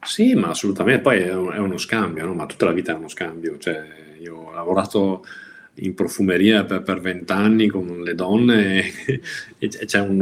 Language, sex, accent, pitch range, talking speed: Italian, male, native, 95-120 Hz, 190 wpm